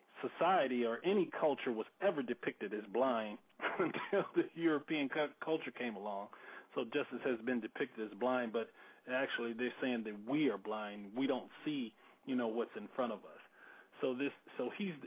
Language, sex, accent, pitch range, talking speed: English, male, American, 120-150 Hz, 175 wpm